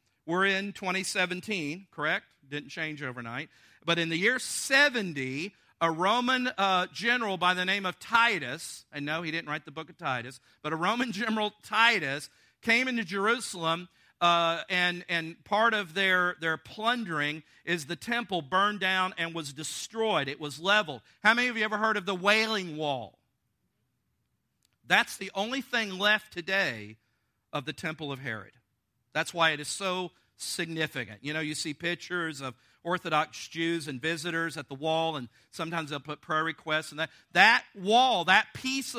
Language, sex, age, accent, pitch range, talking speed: English, male, 50-69, American, 155-220 Hz, 170 wpm